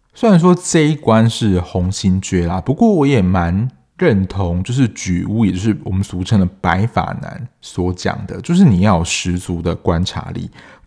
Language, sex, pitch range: Chinese, male, 95-130 Hz